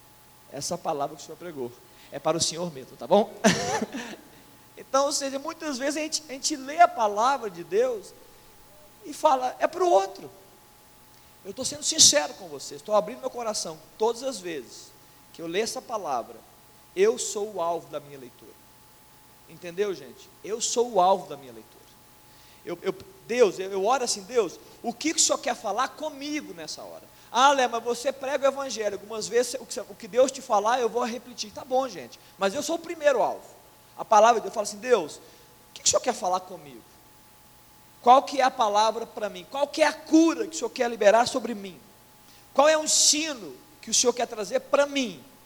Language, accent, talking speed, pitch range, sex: Portuguese, Brazilian, 200 wpm, 210-295 Hz, male